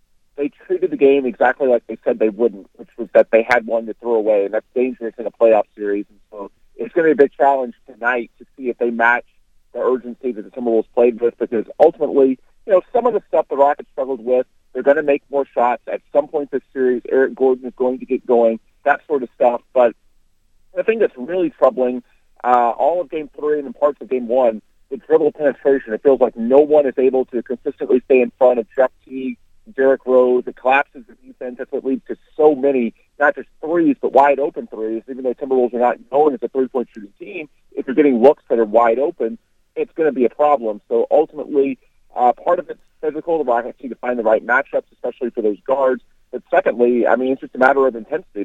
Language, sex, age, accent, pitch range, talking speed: English, male, 40-59, American, 120-145 Hz, 235 wpm